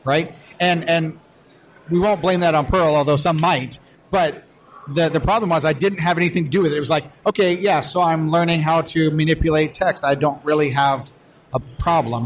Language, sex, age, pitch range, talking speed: English, male, 40-59, 140-170 Hz, 210 wpm